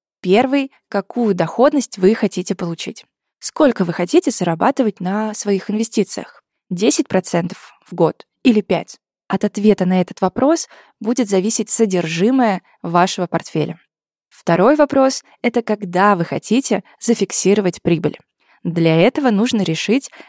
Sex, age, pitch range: female, 20-39, 185-235 Hz